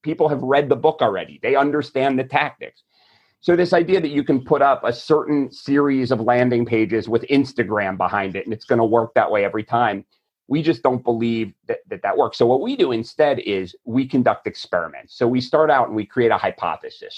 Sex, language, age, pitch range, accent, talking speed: male, English, 40-59, 115-145 Hz, American, 220 wpm